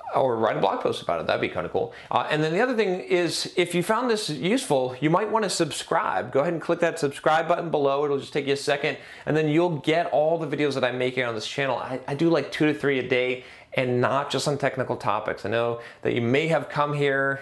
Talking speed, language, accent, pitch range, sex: 280 wpm, English, American, 125-155 Hz, male